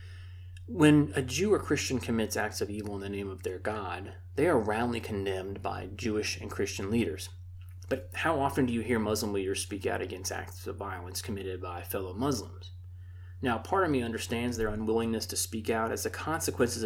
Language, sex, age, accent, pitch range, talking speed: English, male, 30-49, American, 90-110 Hz, 195 wpm